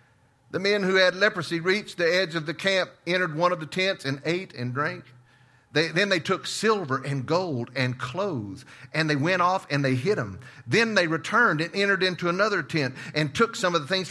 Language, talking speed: English, 215 wpm